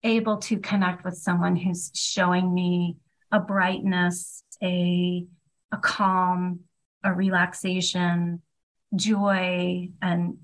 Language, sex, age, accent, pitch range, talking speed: English, female, 30-49, American, 175-205 Hz, 100 wpm